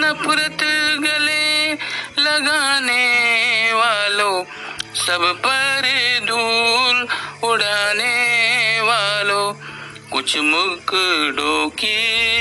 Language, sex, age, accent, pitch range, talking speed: Marathi, male, 50-69, native, 205-255 Hz, 55 wpm